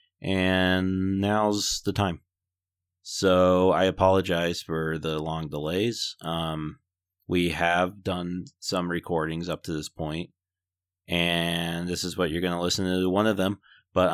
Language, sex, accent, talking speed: English, male, American, 145 wpm